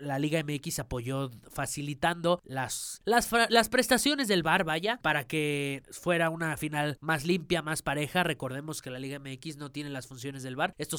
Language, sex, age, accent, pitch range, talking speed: Spanish, male, 20-39, Mexican, 135-170 Hz, 180 wpm